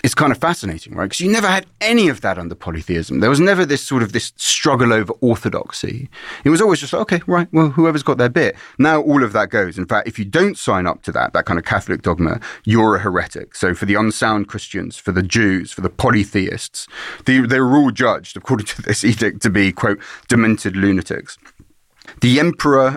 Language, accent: English, British